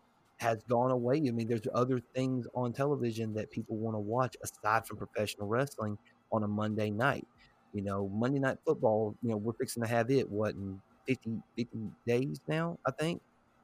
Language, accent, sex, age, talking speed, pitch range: English, American, male, 30-49, 190 wpm, 110-130 Hz